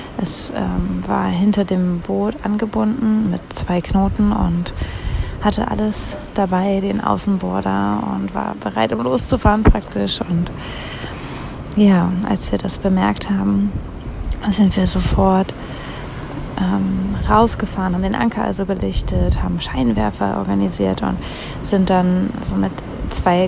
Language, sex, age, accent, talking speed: German, female, 30-49, German, 125 wpm